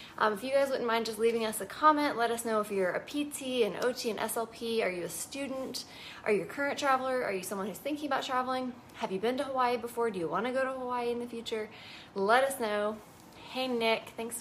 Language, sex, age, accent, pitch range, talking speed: English, female, 20-39, American, 195-240 Hz, 250 wpm